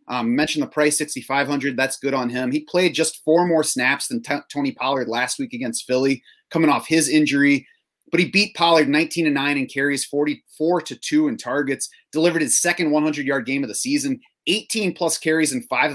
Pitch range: 130-165 Hz